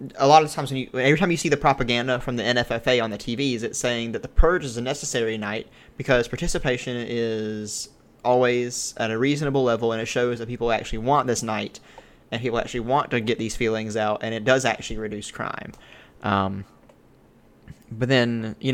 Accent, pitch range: American, 115-140 Hz